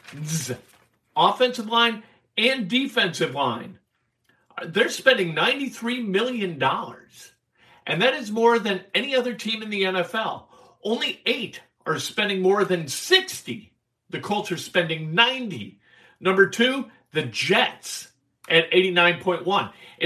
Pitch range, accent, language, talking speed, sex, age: 140-220 Hz, American, English, 115 wpm, male, 50-69